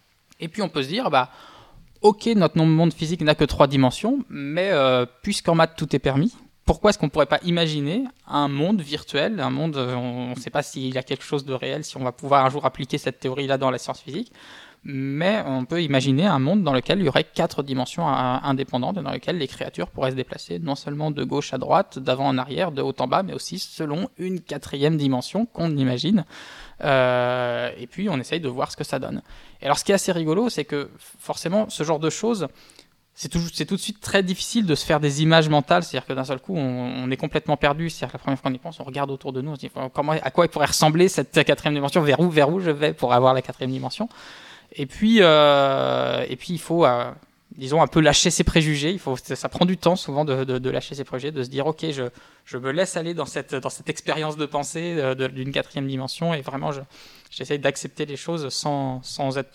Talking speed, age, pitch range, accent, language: 250 wpm, 20-39, 135-170 Hz, French, French